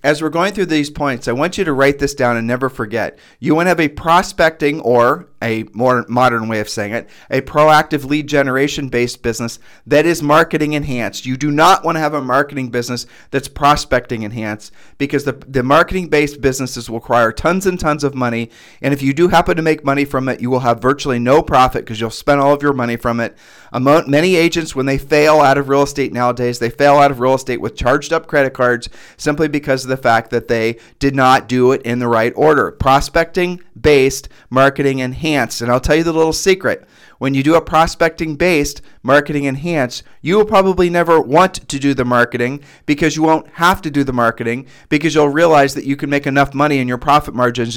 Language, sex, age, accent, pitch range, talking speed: English, male, 40-59, American, 125-150 Hz, 220 wpm